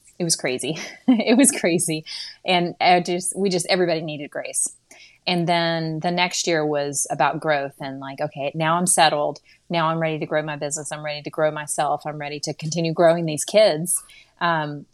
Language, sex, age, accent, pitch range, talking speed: English, female, 30-49, American, 150-175 Hz, 195 wpm